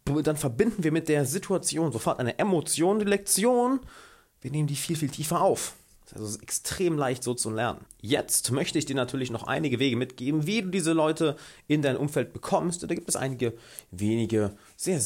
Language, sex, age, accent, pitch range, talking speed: German, male, 30-49, German, 110-155 Hz, 190 wpm